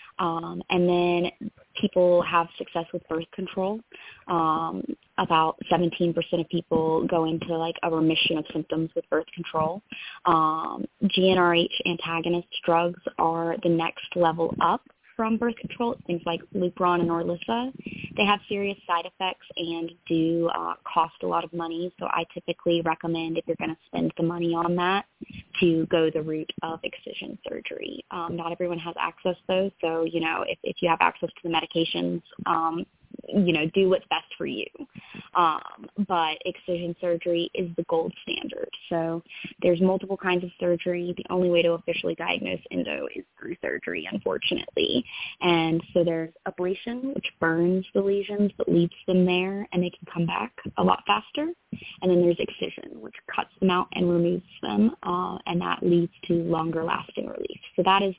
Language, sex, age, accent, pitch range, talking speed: English, female, 20-39, American, 165-185 Hz, 170 wpm